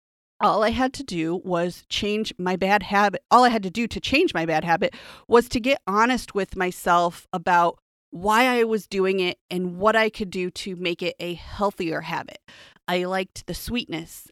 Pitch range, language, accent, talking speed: 180-230 Hz, English, American, 195 wpm